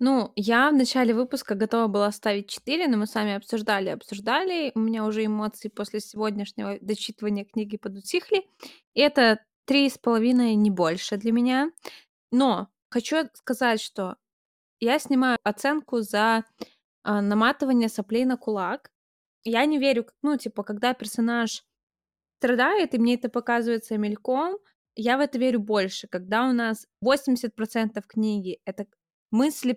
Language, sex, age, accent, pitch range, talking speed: Russian, female, 20-39, native, 210-255 Hz, 145 wpm